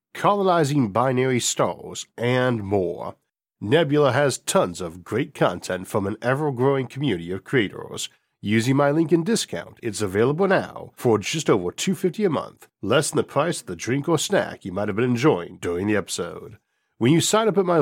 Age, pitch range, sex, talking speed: 40-59, 105-145 Hz, male, 185 wpm